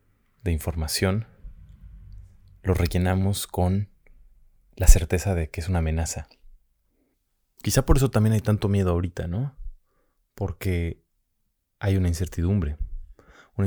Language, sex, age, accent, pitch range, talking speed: English, male, 30-49, Mexican, 85-100 Hz, 115 wpm